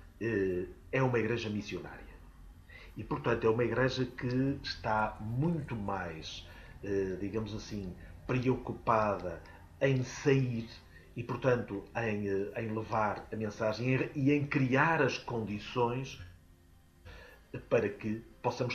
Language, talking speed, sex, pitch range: Portuguese, 100 wpm, male, 95-125 Hz